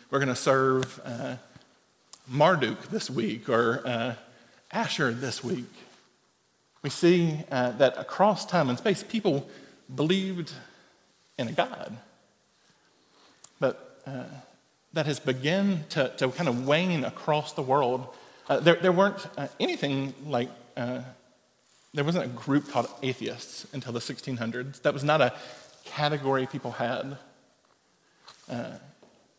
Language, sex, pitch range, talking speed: English, male, 125-155 Hz, 130 wpm